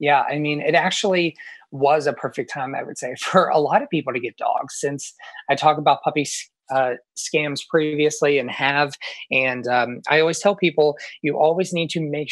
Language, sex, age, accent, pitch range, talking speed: English, male, 20-39, American, 135-170 Hz, 200 wpm